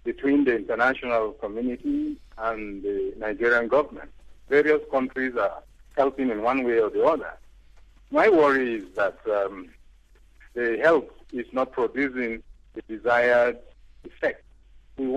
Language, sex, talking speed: English, male, 125 wpm